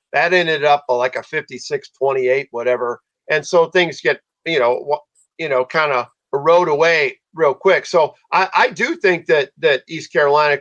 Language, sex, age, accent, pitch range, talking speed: English, male, 50-69, American, 150-215 Hz, 175 wpm